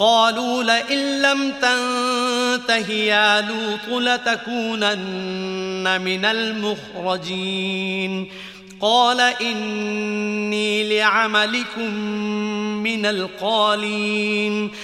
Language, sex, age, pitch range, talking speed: English, male, 30-49, 190-230 Hz, 55 wpm